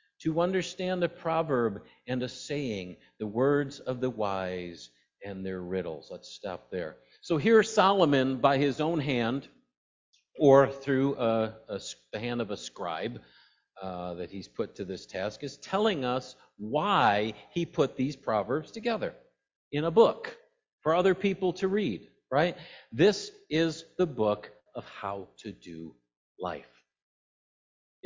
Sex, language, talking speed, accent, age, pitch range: male, English, 145 wpm, American, 50-69, 105-170 Hz